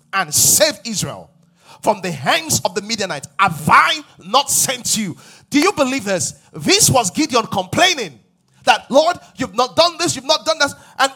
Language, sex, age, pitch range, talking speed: English, male, 30-49, 180-285 Hz, 175 wpm